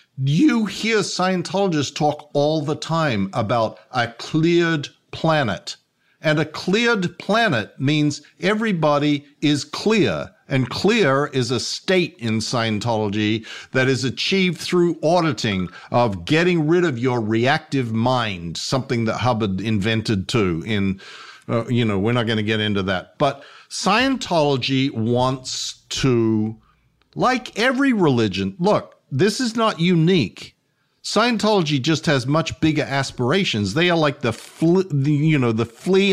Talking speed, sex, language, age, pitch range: 135 wpm, male, English, 50-69, 120-180 Hz